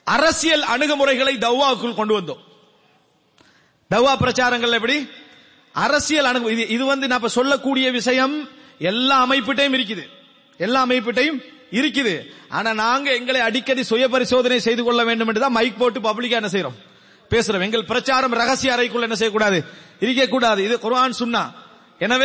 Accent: Indian